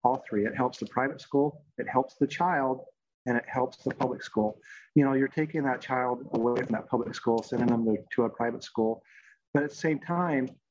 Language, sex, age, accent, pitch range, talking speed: English, male, 30-49, American, 115-130 Hz, 225 wpm